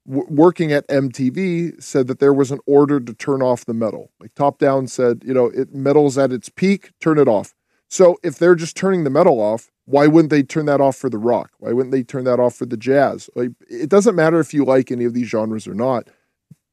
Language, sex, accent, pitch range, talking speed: English, male, American, 130-170 Hz, 245 wpm